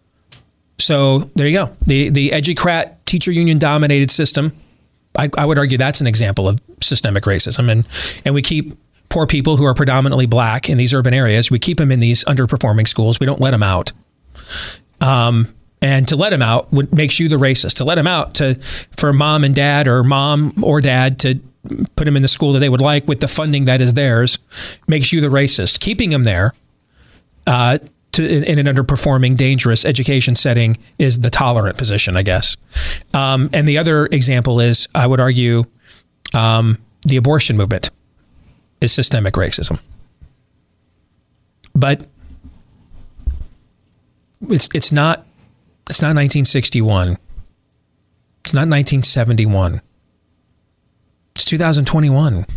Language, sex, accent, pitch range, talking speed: English, male, American, 115-145 Hz, 150 wpm